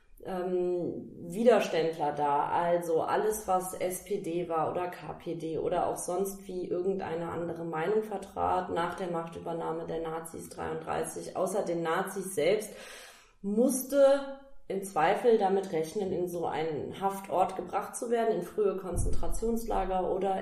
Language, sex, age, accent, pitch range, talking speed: German, female, 30-49, German, 175-215 Hz, 125 wpm